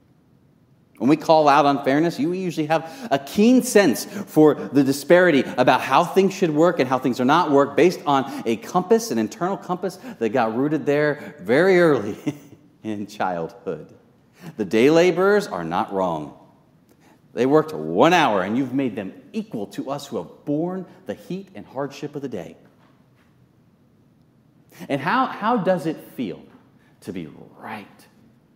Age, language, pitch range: 40-59, English, 105-165 Hz